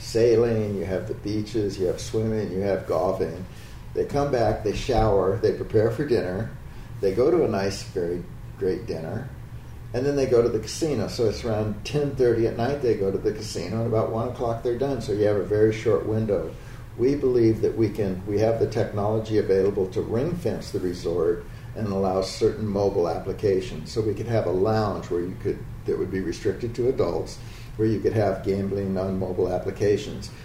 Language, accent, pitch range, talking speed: English, American, 100-120 Hz, 205 wpm